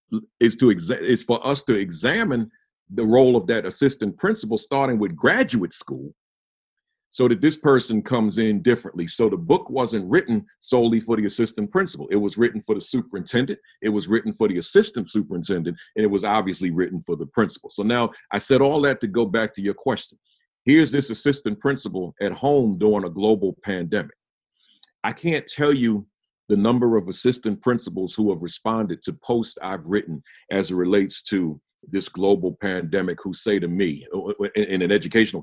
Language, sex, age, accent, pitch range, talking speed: English, male, 50-69, American, 105-140 Hz, 185 wpm